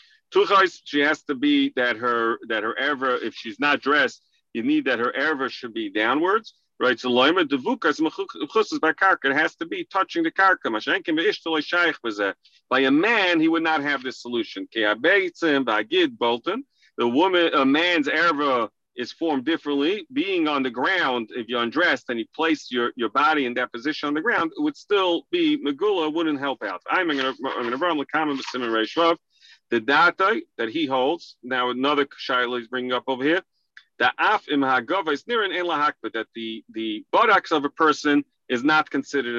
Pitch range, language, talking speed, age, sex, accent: 125-175 Hz, English, 155 wpm, 40-59, male, American